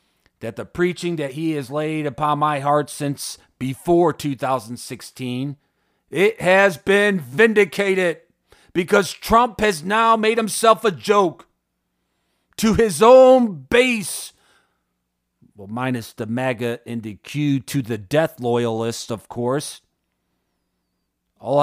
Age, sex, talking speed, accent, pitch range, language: 40-59, male, 120 wpm, American, 125-190 Hz, English